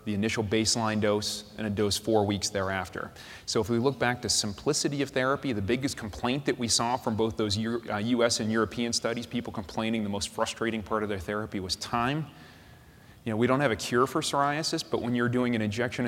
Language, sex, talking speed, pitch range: English, male, 220 wpm, 105-125 Hz